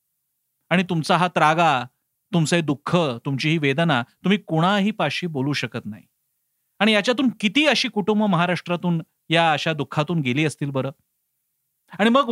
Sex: male